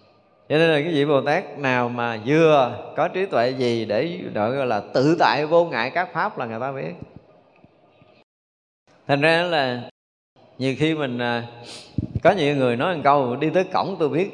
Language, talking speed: Vietnamese, 190 wpm